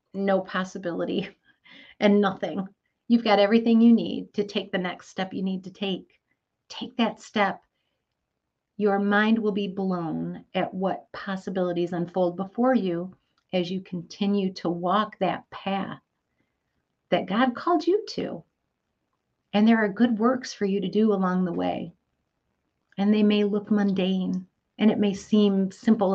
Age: 50-69